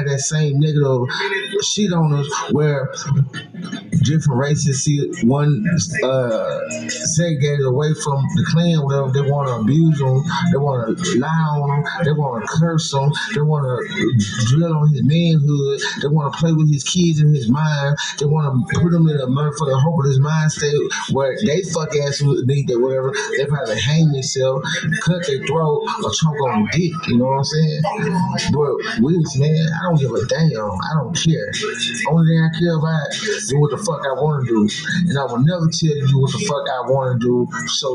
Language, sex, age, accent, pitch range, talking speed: English, male, 30-49, American, 135-165 Hz, 195 wpm